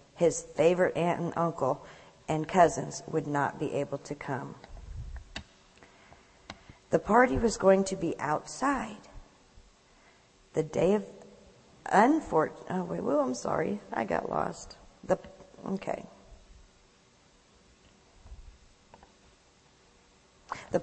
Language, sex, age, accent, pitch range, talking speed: English, female, 50-69, American, 120-195 Hz, 100 wpm